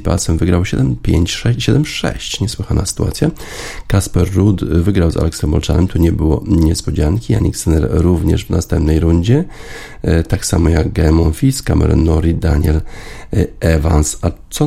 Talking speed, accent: 125 wpm, native